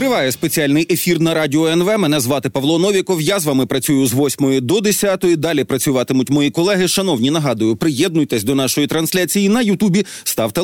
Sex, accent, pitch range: male, native, 140-185 Hz